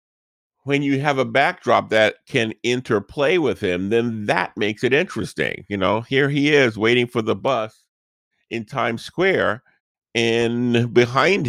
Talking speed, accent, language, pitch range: 150 wpm, American, English, 90-120 Hz